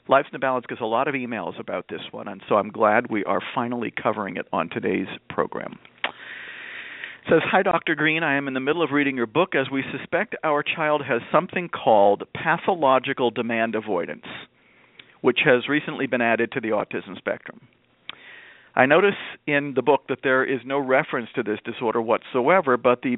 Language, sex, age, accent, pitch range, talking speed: English, male, 50-69, American, 120-145 Hz, 190 wpm